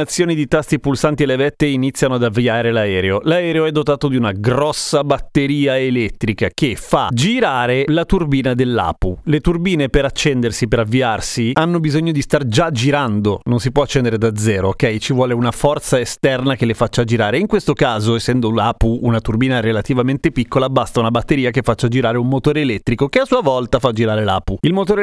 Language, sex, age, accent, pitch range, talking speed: Italian, male, 30-49, native, 120-155 Hz, 185 wpm